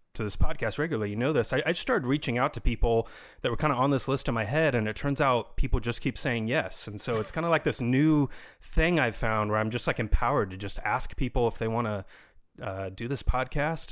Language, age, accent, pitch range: English, 30-49, American, 110-140 Hz